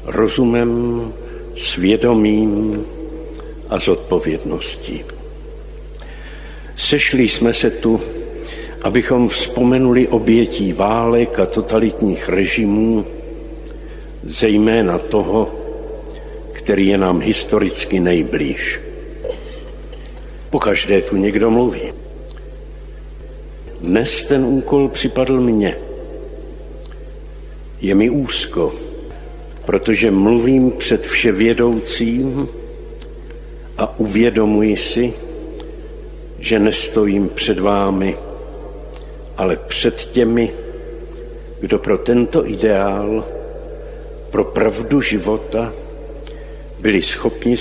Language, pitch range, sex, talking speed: Slovak, 110-150 Hz, male, 75 wpm